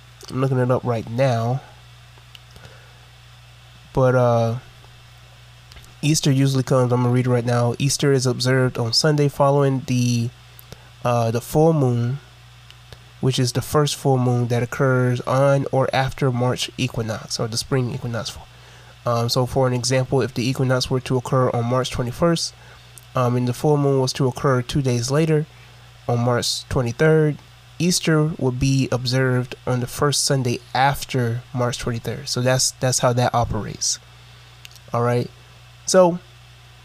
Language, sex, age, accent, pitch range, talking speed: English, male, 20-39, American, 120-135 Hz, 155 wpm